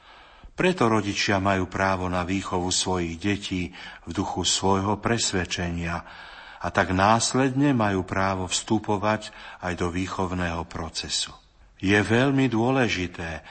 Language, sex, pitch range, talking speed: Slovak, male, 90-105 Hz, 110 wpm